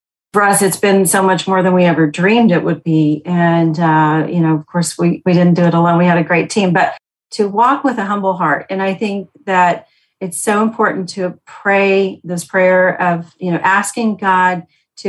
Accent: American